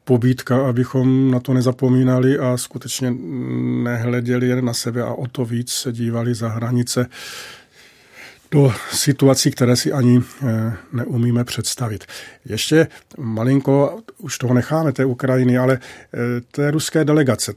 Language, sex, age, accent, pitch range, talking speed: Czech, male, 40-59, native, 125-135 Hz, 125 wpm